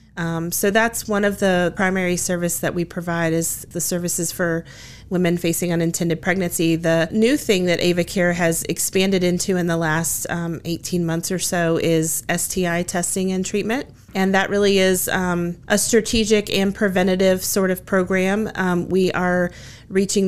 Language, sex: English, female